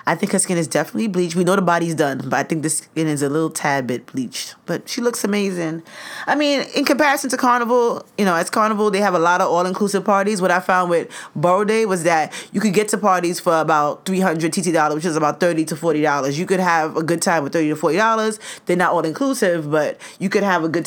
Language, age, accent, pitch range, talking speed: English, 20-39, American, 160-210 Hz, 245 wpm